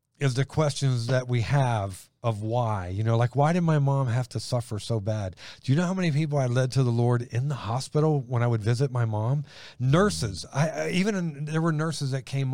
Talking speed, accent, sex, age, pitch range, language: 230 wpm, American, male, 40-59, 110-135 Hz, English